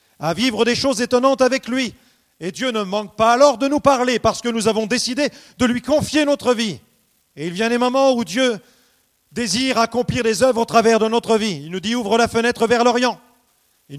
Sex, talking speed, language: male, 220 wpm, French